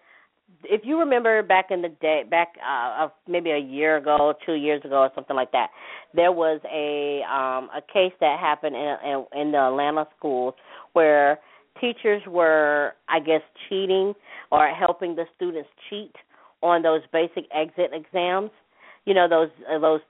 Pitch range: 140-175 Hz